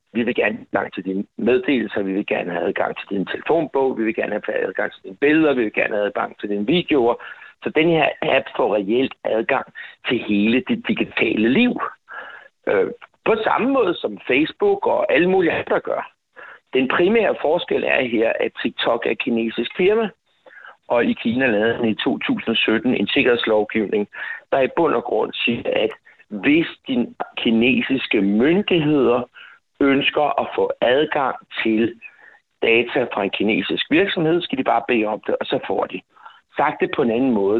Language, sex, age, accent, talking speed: Danish, male, 60-79, native, 180 wpm